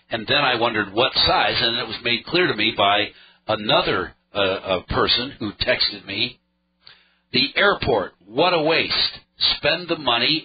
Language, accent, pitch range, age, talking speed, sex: English, American, 105-155 Hz, 60-79, 165 wpm, male